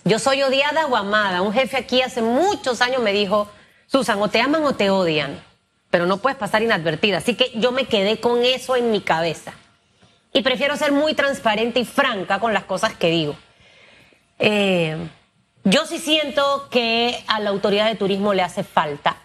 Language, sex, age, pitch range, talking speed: Spanish, female, 30-49, 210-285 Hz, 185 wpm